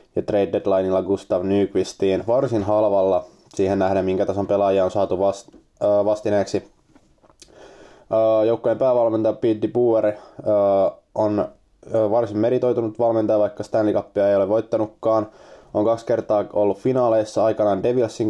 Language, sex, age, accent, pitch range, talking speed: Finnish, male, 20-39, native, 100-115 Hz, 120 wpm